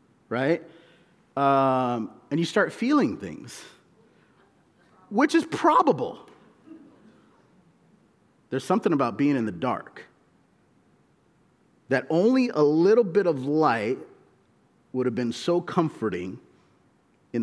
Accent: American